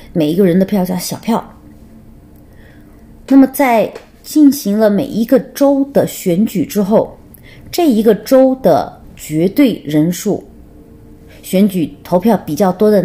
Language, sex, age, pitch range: Chinese, female, 30-49, 140-200 Hz